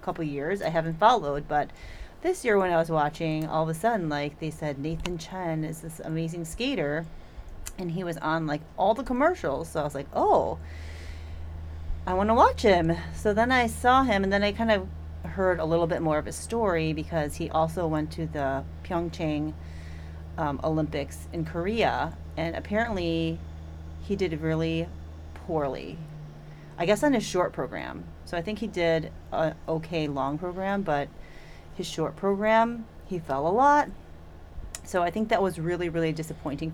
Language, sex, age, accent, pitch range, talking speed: English, female, 30-49, American, 135-180 Hz, 180 wpm